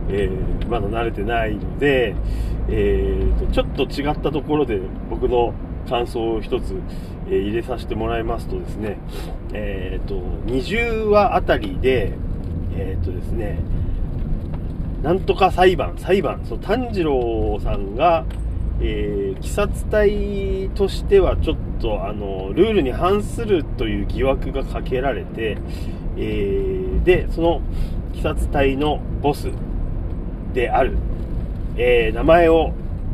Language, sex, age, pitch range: Japanese, male, 40-59, 90-140 Hz